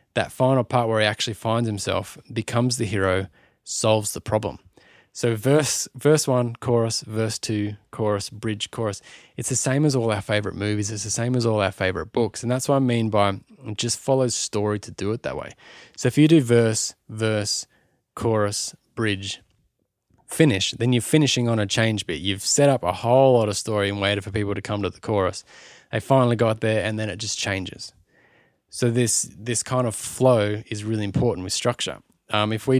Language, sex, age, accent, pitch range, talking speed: English, male, 20-39, Australian, 105-125 Hz, 200 wpm